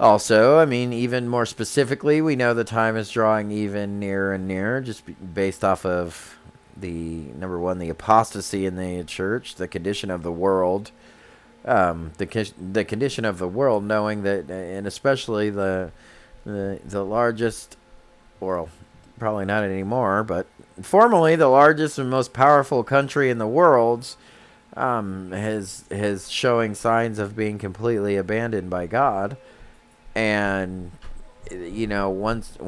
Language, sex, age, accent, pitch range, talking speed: English, male, 30-49, American, 95-110 Hz, 145 wpm